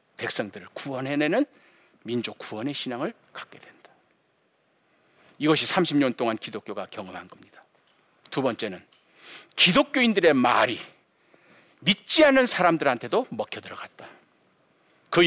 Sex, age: male, 50-69